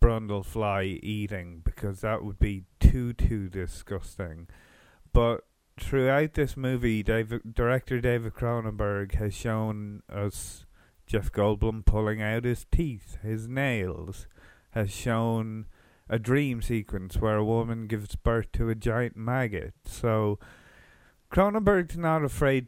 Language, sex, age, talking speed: English, male, 30-49, 120 wpm